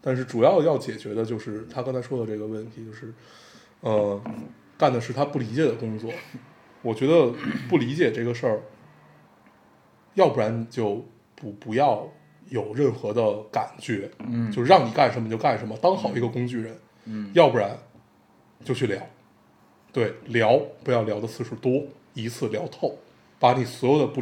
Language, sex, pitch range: Chinese, male, 115-150 Hz